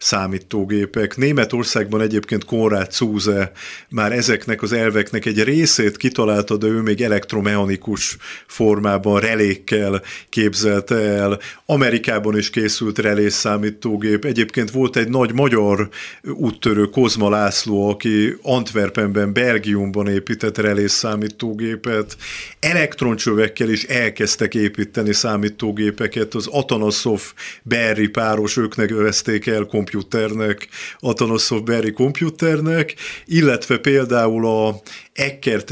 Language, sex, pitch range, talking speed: Hungarian, male, 105-120 Hz, 100 wpm